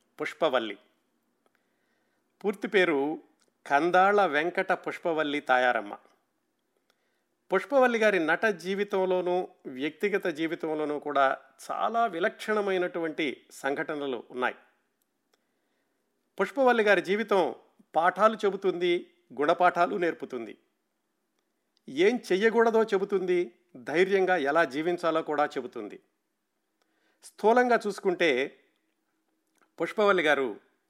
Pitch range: 150-195 Hz